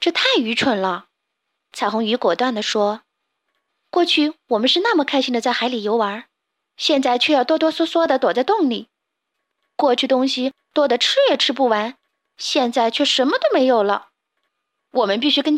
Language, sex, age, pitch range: Chinese, female, 20-39, 215-280 Hz